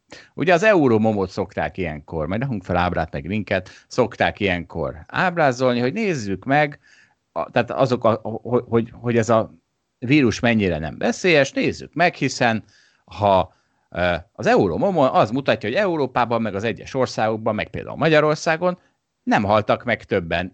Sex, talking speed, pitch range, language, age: male, 150 wpm, 90-125 Hz, Hungarian, 30-49